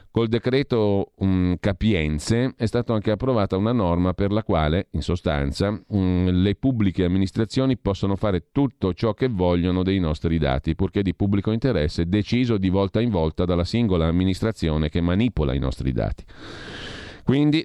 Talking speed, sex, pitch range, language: 150 wpm, male, 85-115 Hz, Italian